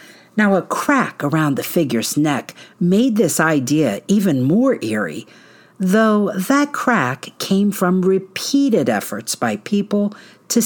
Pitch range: 145-205 Hz